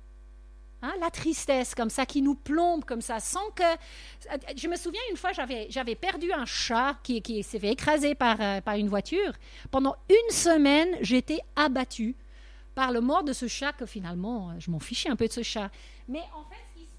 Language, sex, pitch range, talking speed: French, female, 225-310 Hz, 205 wpm